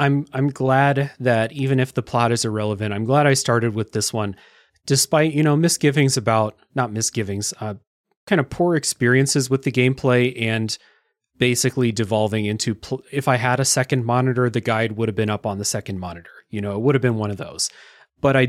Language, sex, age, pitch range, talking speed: English, male, 30-49, 110-135 Hz, 210 wpm